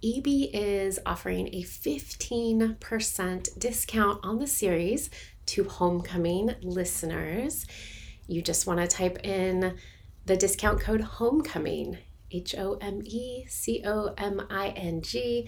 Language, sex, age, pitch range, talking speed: English, female, 30-49, 165-215 Hz, 90 wpm